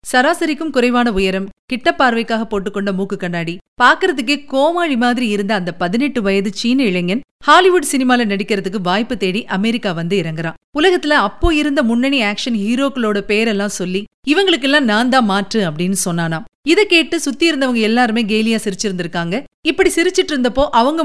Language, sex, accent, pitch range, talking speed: Tamil, female, native, 200-280 Hz, 130 wpm